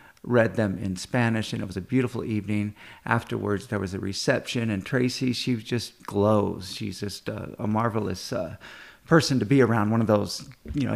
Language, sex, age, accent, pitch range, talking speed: English, male, 50-69, American, 110-135 Hz, 185 wpm